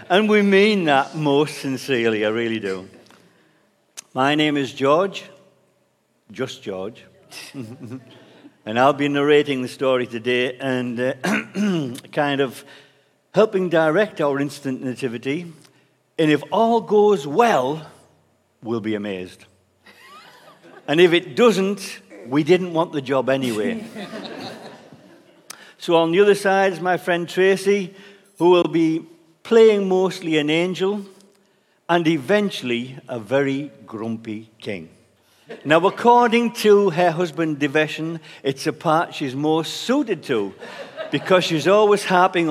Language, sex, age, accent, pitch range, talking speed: English, male, 50-69, British, 130-190 Hz, 125 wpm